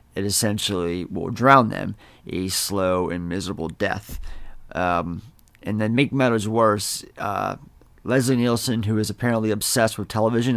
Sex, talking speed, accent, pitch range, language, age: male, 140 wpm, American, 95-120 Hz, English, 30-49